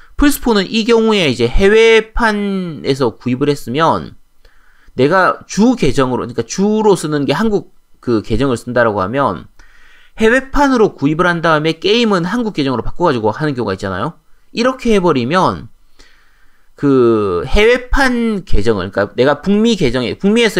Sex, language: male, Korean